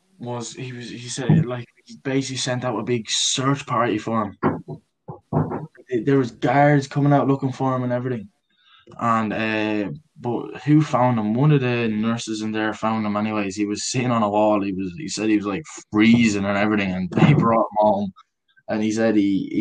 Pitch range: 105-135 Hz